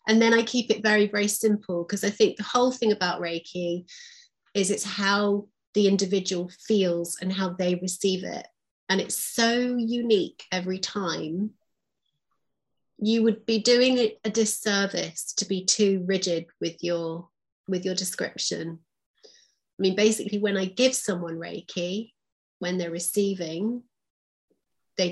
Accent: British